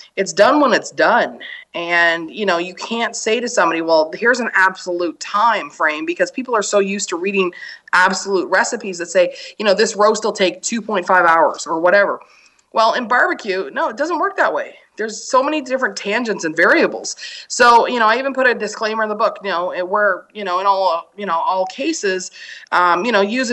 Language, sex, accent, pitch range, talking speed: English, female, American, 180-245 Hz, 210 wpm